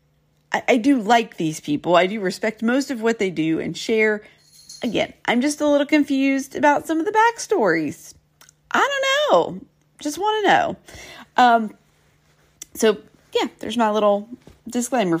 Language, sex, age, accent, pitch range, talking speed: English, female, 40-59, American, 165-260 Hz, 160 wpm